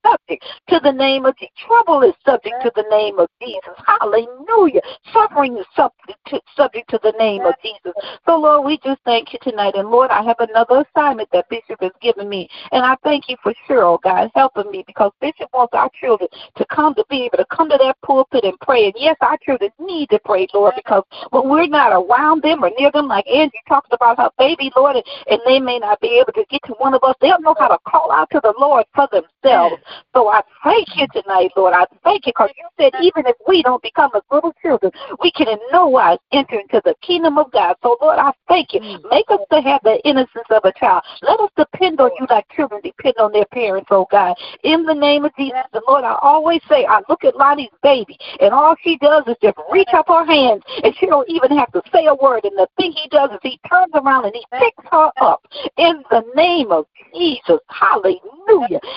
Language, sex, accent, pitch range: English, female, American, 230-315 Hz